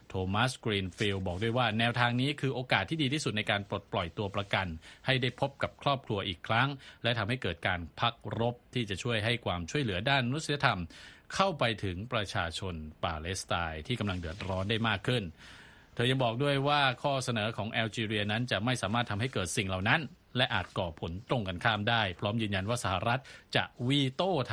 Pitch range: 100-125 Hz